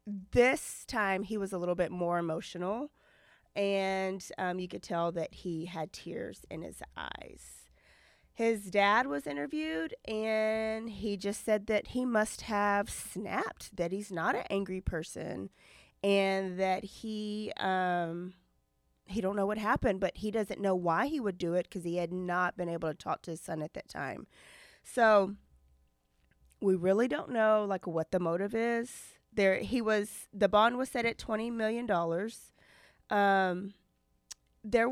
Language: English